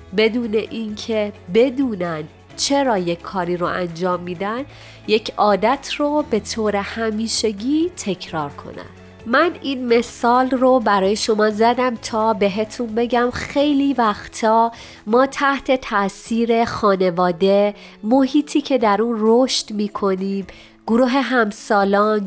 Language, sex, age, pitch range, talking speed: Persian, female, 30-49, 200-250 Hz, 110 wpm